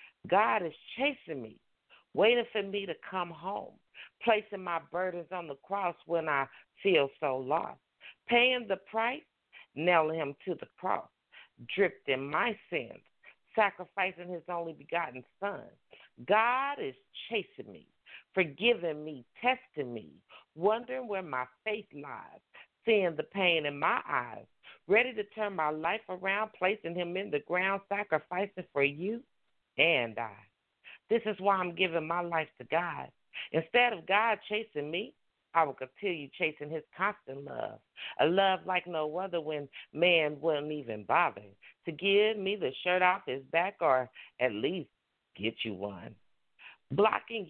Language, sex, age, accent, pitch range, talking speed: English, female, 50-69, American, 160-205 Hz, 150 wpm